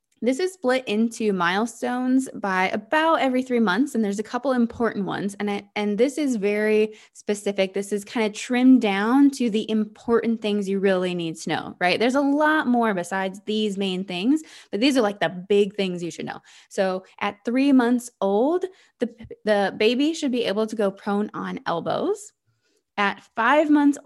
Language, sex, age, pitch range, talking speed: English, female, 20-39, 195-245 Hz, 190 wpm